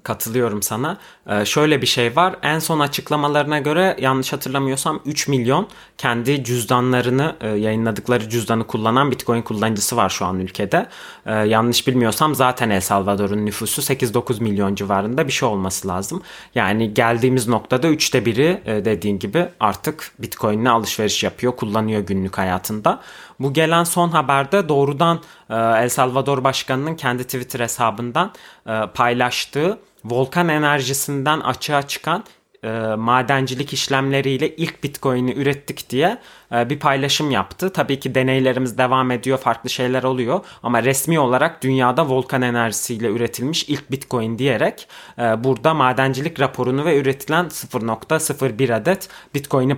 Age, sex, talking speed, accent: 30-49, male, 135 wpm, native